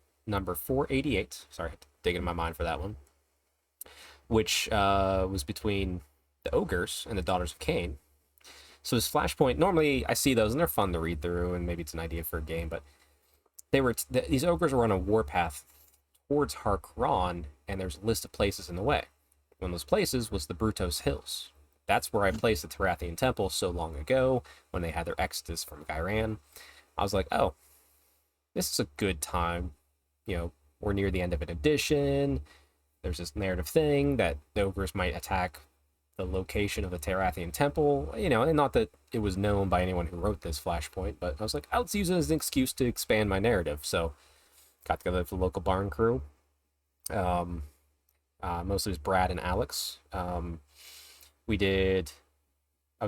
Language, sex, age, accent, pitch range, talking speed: English, male, 30-49, American, 75-105 Hz, 190 wpm